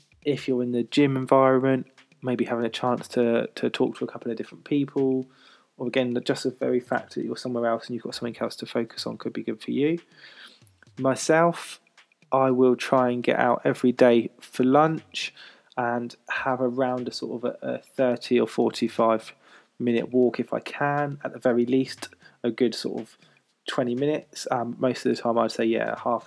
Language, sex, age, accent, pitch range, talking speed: English, male, 20-39, British, 120-135 Hz, 200 wpm